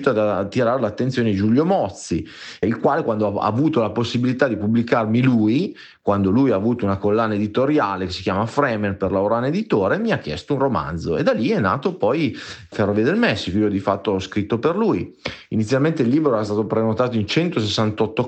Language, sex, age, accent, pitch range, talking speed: Italian, male, 30-49, native, 95-115 Hz, 195 wpm